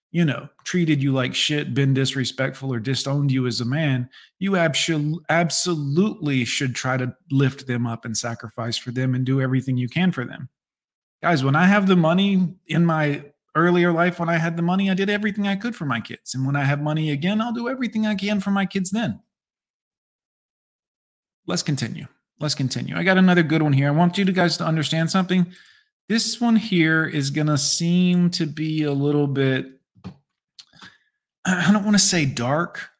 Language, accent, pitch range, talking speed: English, American, 125-170 Hz, 195 wpm